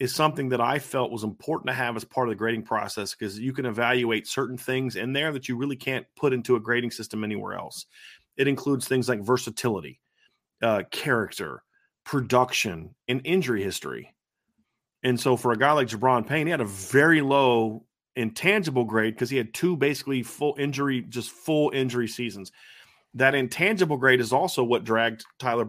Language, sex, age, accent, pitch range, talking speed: English, male, 30-49, American, 115-140 Hz, 185 wpm